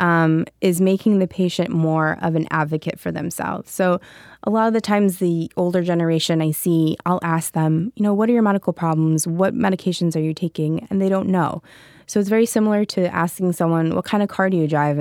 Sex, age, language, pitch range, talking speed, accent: female, 20-39, English, 160-195 Hz, 220 wpm, American